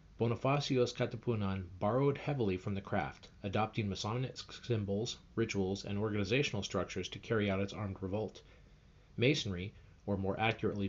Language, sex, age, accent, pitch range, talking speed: English, male, 40-59, American, 95-120 Hz, 130 wpm